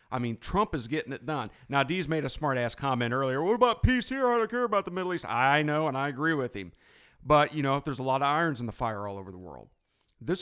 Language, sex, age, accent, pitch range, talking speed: English, male, 40-59, American, 130-180 Hz, 295 wpm